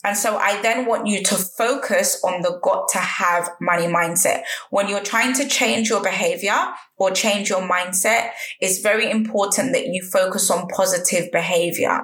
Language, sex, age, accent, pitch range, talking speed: English, female, 20-39, British, 185-230 Hz, 175 wpm